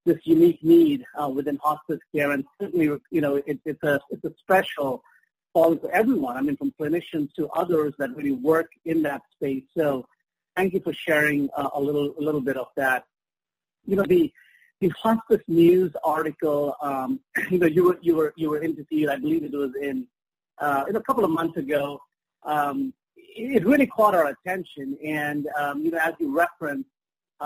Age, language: 40-59, English